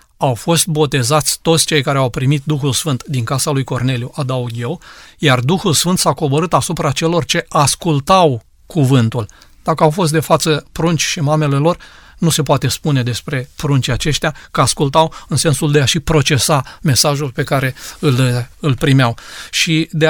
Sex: male